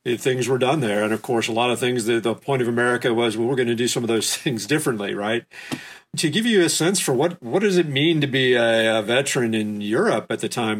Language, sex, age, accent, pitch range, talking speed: English, male, 50-69, American, 115-165 Hz, 270 wpm